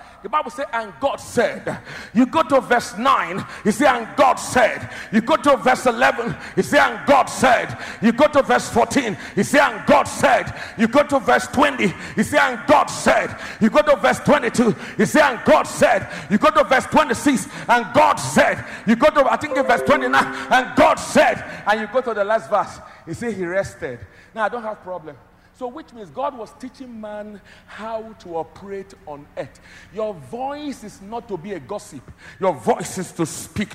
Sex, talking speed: male, 205 wpm